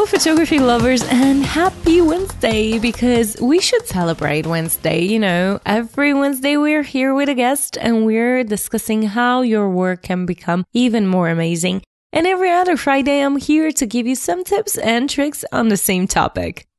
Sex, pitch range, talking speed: female, 200-285 Hz, 170 wpm